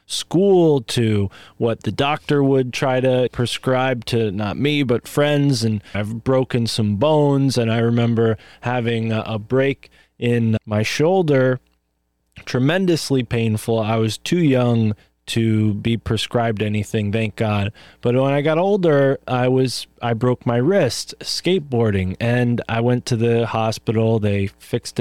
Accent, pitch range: American, 110-130 Hz